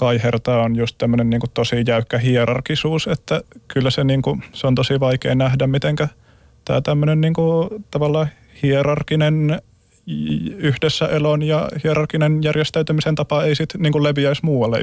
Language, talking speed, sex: Finnish, 130 wpm, male